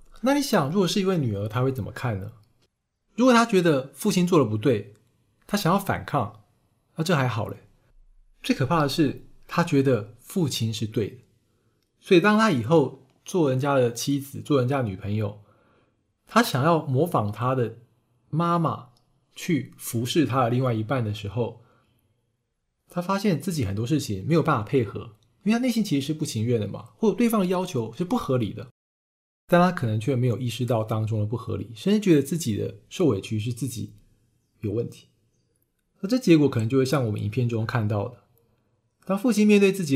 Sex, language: male, Chinese